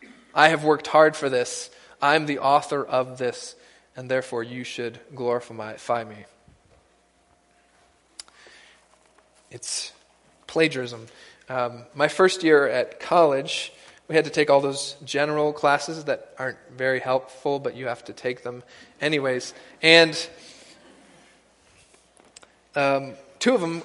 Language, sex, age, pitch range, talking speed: English, male, 20-39, 135-175 Hz, 125 wpm